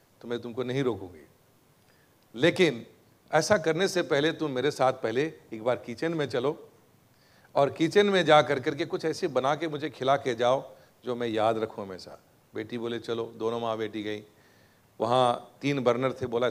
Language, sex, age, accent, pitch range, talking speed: Hindi, male, 40-59, native, 115-150 Hz, 180 wpm